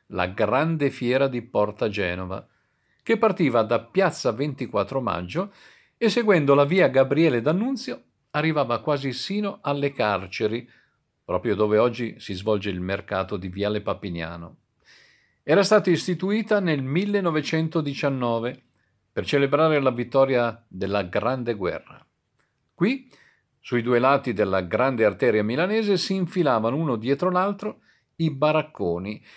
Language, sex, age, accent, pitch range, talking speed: Italian, male, 50-69, native, 105-175 Hz, 125 wpm